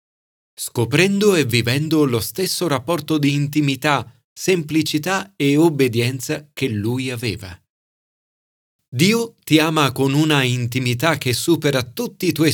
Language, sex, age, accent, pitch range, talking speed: Italian, male, 40-59, native, 115-155 Hz, 120 wpm